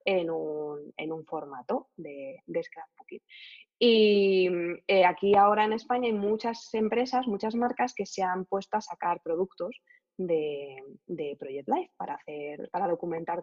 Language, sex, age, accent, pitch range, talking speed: Spanish, female, 20-39, Spanish, 170-215 Hz, 145 wpm